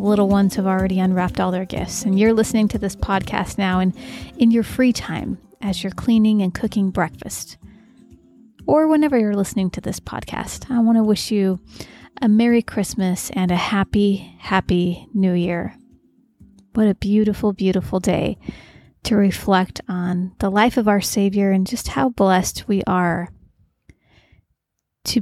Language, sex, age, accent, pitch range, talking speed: English, female, 30-49, American, 185-225 Hz, 160 wpm